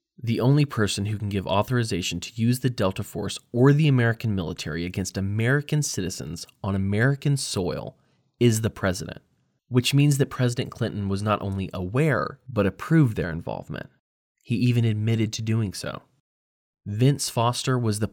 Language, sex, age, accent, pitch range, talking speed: English, male, 20-39, American, 95-125 Hz, 160 wpm